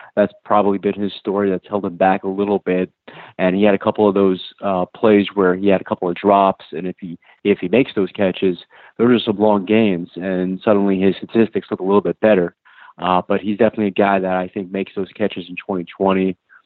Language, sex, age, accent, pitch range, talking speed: English, male, 30-49, American, 95-105 Hz, 230 wpm